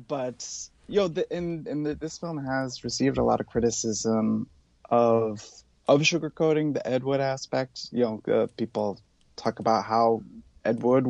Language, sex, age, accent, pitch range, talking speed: English, male, 20-39, American, 110-135 Hz, 155 wpm